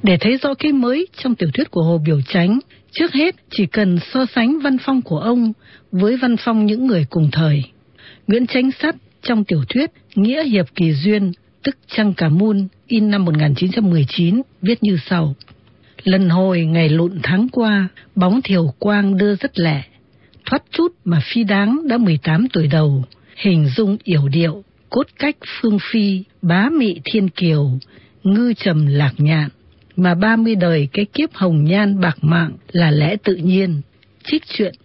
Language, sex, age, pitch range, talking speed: Vietnamese, female, 60-79, 160-225 Hz, 175 wpm